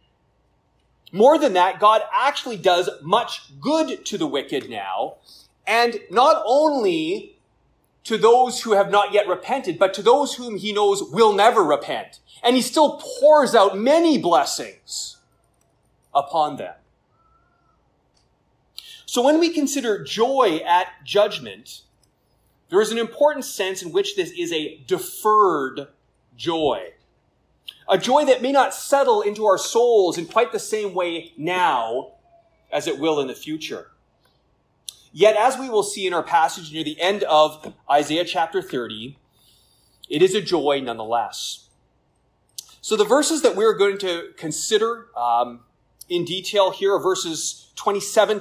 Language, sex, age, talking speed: English, male, 30-49, 145 wpm